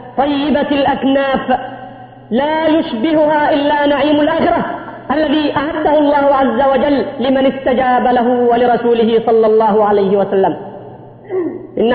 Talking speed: 105 wpm